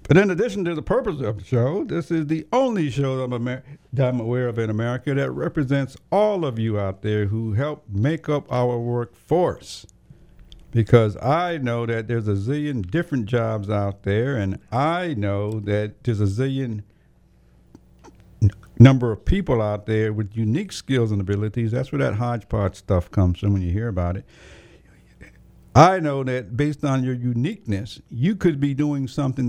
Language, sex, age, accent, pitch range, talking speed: English, male, 60-79, American, 105-160 Hz, 175 wpm